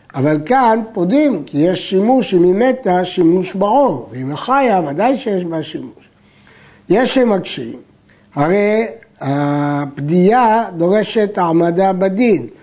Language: Hebrew